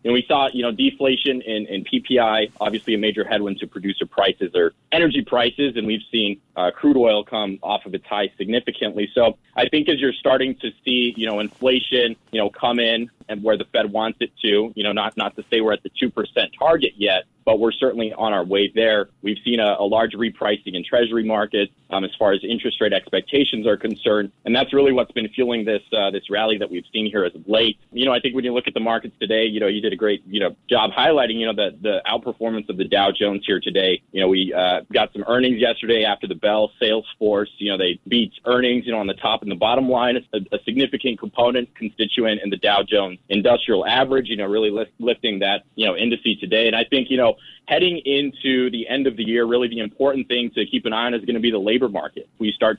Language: English